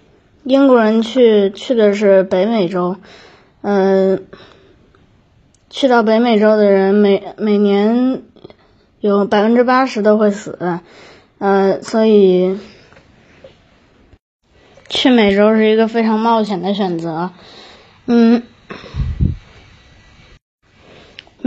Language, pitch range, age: Chinese, 195-230 Hz, 20-39